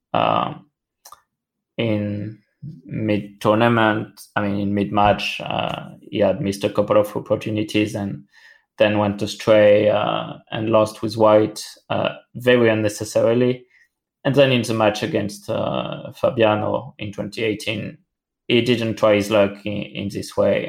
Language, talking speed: English, 135 wpm